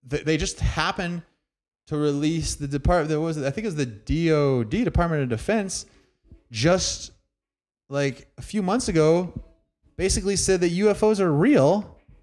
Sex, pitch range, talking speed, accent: male, 120-160 Hz, 150 wpm, American